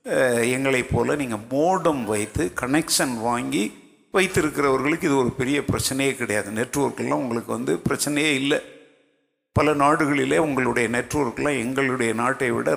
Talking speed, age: 115 wpm, 50-69